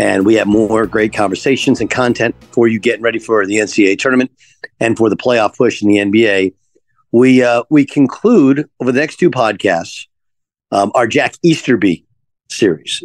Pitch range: 110-135 Hz